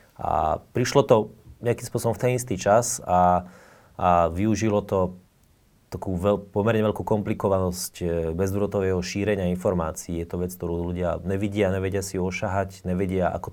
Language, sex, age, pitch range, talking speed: Slovak, male, 30-49, 90-100 Hz, 140 wpm